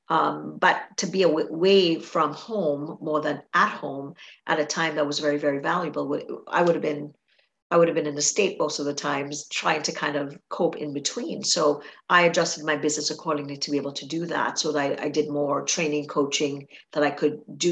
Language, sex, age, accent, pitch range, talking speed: English, female, 50-69, American, 145-175 Hz, 225 wpm